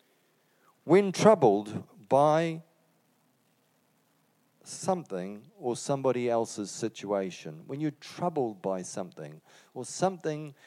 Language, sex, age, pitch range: English, male, 40-59, 115-160 Hz